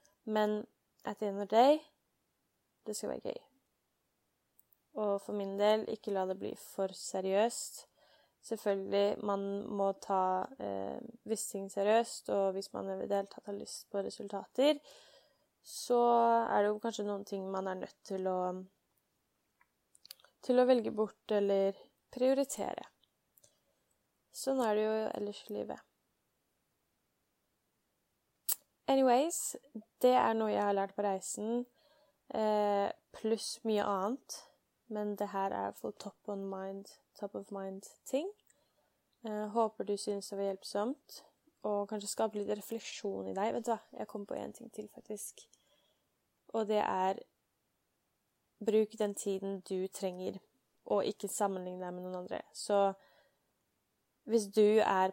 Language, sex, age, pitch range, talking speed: English, female, 20-39, 195-225 Hz, 140 wpm